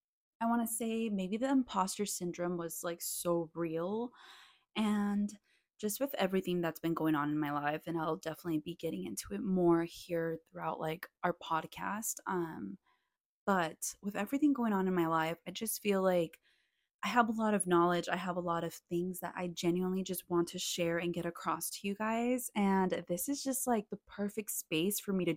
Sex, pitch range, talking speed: female, 170-205 Hz, 200 wpm